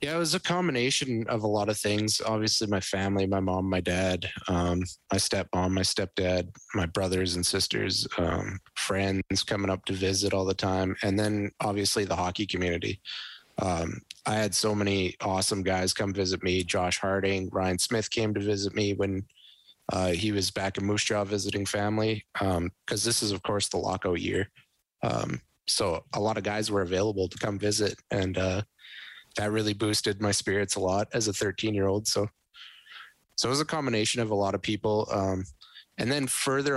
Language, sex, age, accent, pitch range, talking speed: English, male, 20-39, American, 95-105 Hz, 195 wpm